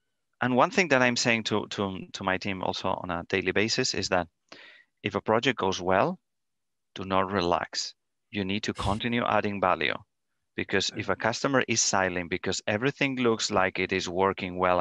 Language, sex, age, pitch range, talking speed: English, male, 30-49, 95-115 Hz, 185 wpm